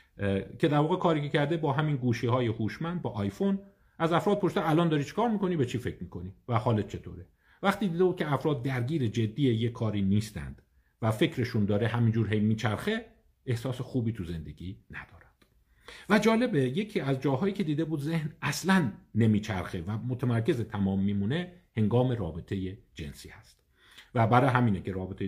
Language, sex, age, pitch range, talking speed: Persian, male, 50-69, 95-135 Hz, 175 wpm